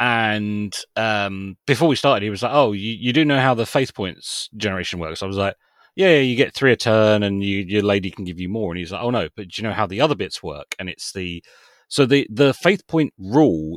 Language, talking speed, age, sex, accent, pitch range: English, 260 wpm, 30-49, male, British, 90-120 Hz